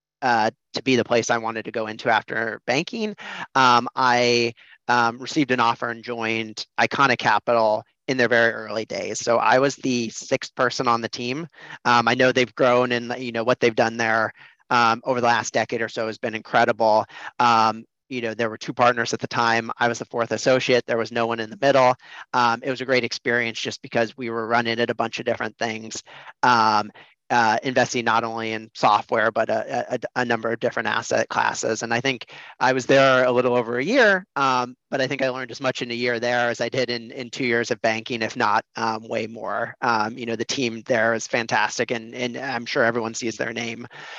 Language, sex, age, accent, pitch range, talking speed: English, male, 40-59, American, 115-130 Hz, 225 wpm